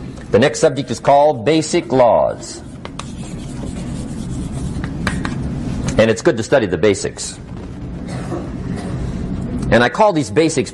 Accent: American